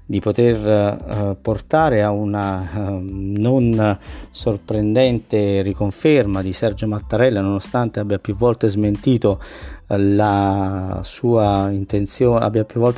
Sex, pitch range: male, 100-120 Hz